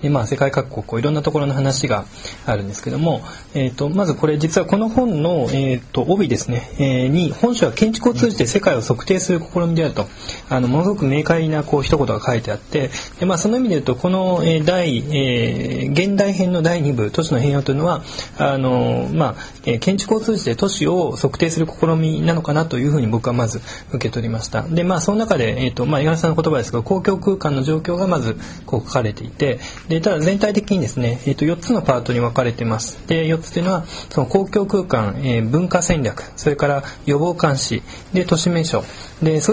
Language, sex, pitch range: Japanese, male, 125-175 Hz